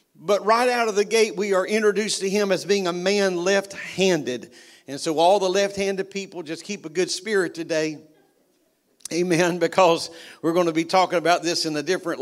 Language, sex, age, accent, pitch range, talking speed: English, male, 50-69, American, 160-195 Hz, 195 wpm